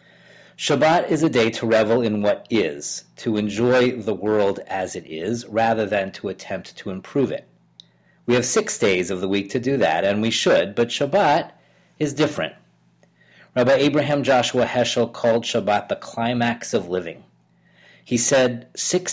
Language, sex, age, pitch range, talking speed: English, male, 40-59, 95-125 Hz, 165 wpm